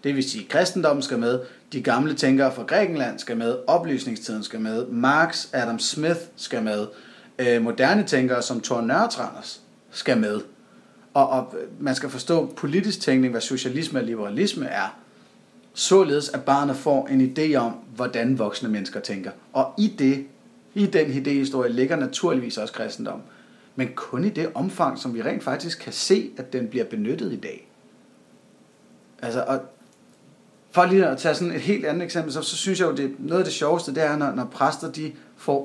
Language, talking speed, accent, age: Danish, 180 wpm, native, 30-49